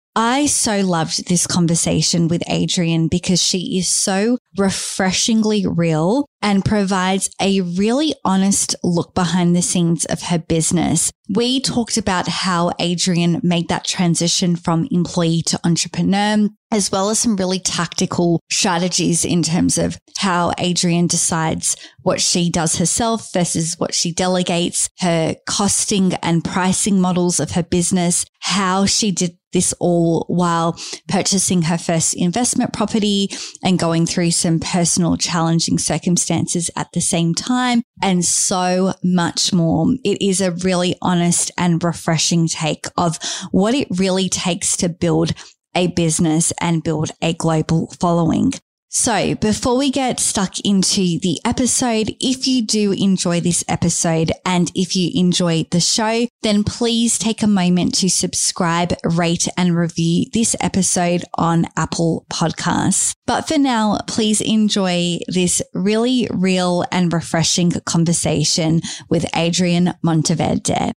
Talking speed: 140 wpm